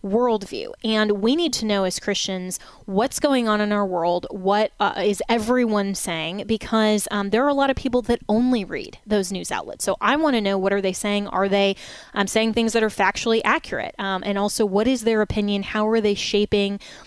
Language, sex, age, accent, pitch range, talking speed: English, female, 20-39, American, 195-225 Hz, 220 wpm